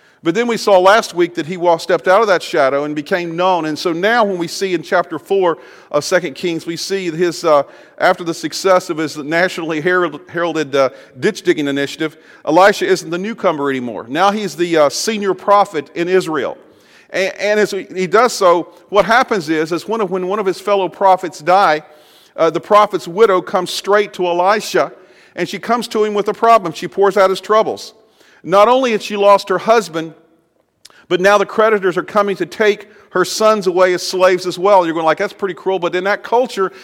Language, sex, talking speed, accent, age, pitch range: English, male, 210 wpm, American, 40-59, 170-200 Hz